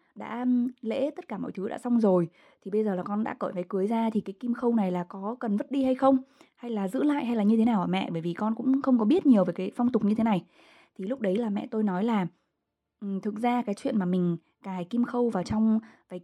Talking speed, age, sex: 285 wpm, 20-39, female